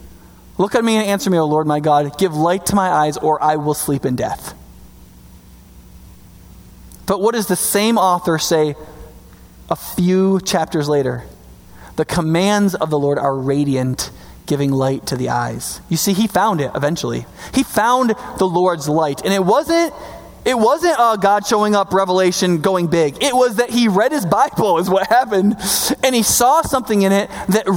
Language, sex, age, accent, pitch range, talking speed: English, male, 20-39, American, 165-245 Hz, 180 wpm